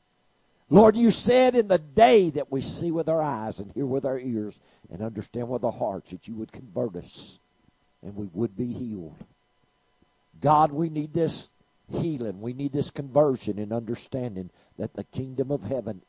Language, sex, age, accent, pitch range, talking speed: English, male, 50-69, American, 105-155 Hz, 180 wpm